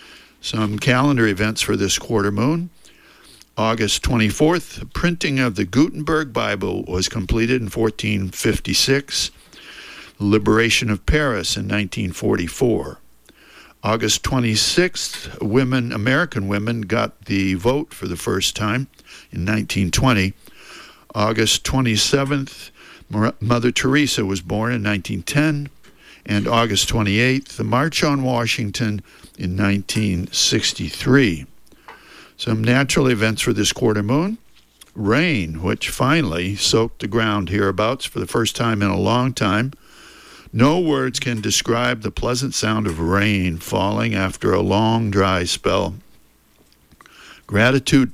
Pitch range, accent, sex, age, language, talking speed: 100-125 Hz, American, male, 60-79, English, 115 wpm